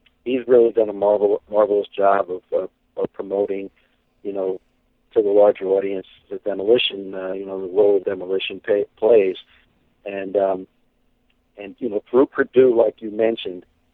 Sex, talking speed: male, 165 wpm